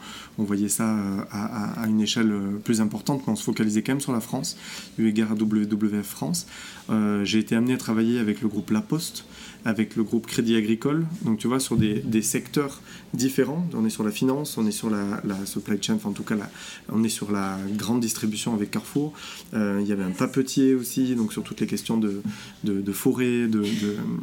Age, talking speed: 30-49, 225 wpm